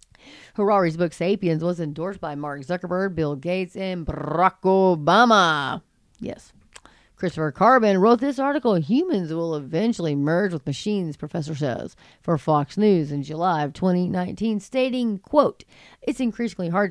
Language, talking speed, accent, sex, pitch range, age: English, 140 wpm, American, female, 160-210 Hz, 30-49